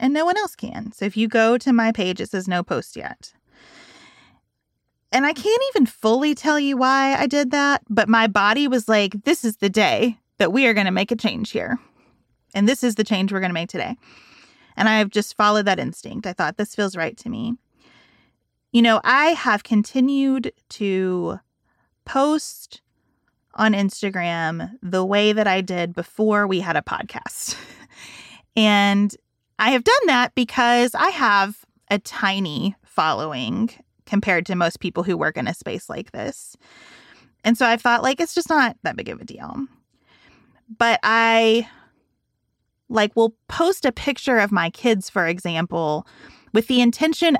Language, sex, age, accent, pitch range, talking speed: English, female, 30-49, American, 200-245 Hz, 175 wpm